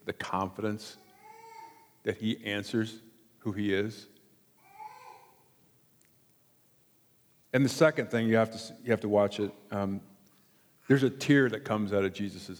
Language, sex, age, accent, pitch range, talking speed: English, male, 50-69, American, 100-135 Hz, 140 wpm